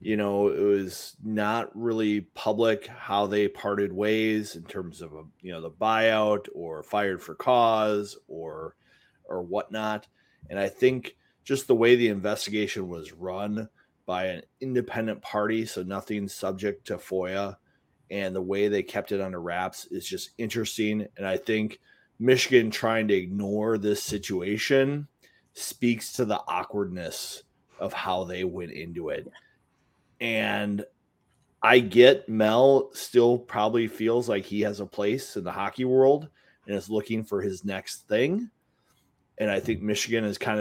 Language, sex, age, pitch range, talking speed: English, male, 30-49, 100-115 Hz, 155 wpm